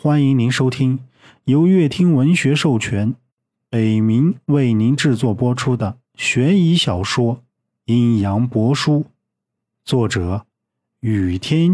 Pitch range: 115-175 Hz